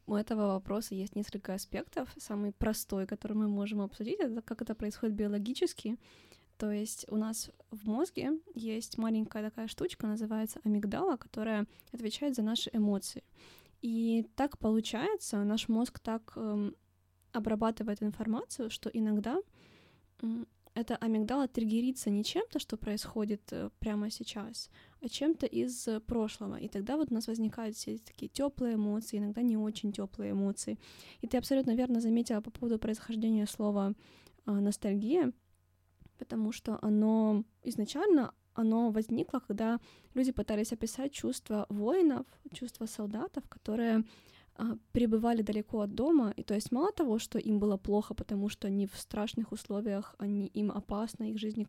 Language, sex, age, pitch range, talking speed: Ukrainian, female, 10-29, 210-235 Hz, 145 wpm